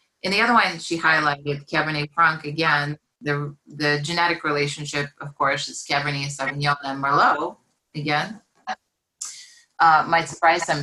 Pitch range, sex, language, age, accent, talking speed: 145-165 Hz, female, English, 30-49, American, 145 wpm